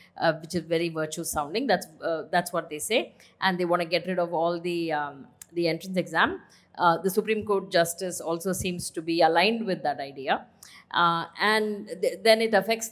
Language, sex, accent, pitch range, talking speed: English, female, Indian, 170-205 Hz, 205 wpm